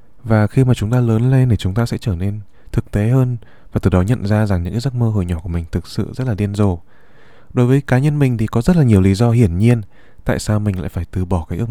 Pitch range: 95-120 Hz